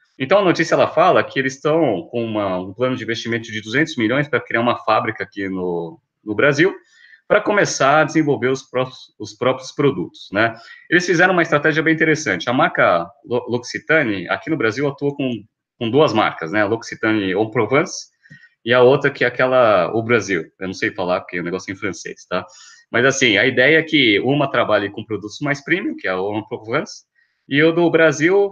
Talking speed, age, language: 205 wpm, 20-39, Portuguese